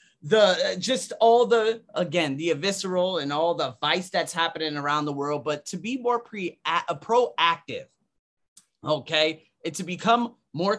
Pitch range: 135-180 Hz